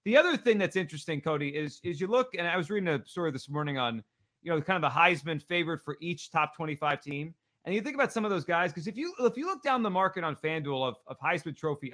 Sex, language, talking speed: male, English, 275 wpm